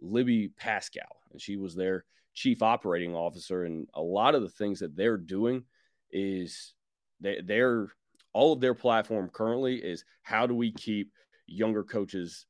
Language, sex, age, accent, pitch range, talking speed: English, male, 30-49, American, 95-125 Hz, 155 wpm